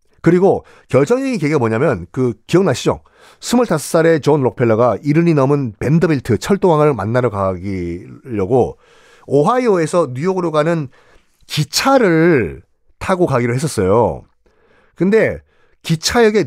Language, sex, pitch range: Korean, male, 125-195 Hz